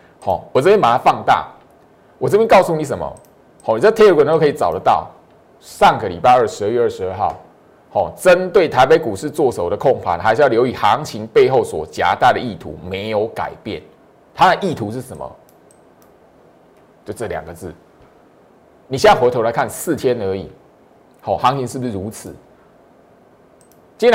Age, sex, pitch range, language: 30-49, male, 120-205 Hz, Chinese